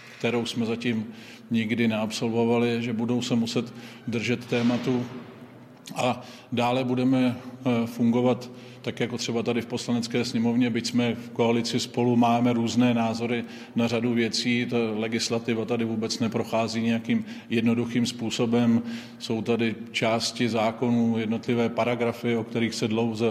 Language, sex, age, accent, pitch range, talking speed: Czech, male, 40-59, native, 115-120 Hz, 130 wpm